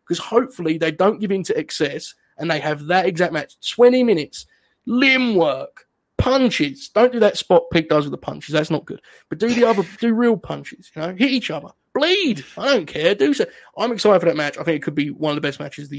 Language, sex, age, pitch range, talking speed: English, male, 20-39, 150-210 Hz, 250 wpm